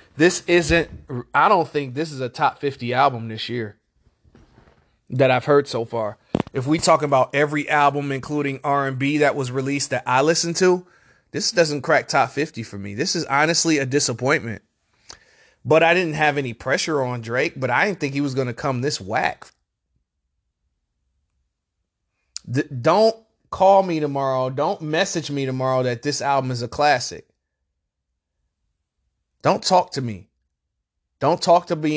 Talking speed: 165 wpm